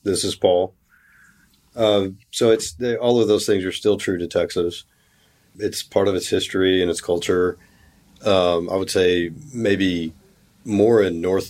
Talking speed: 165 wpm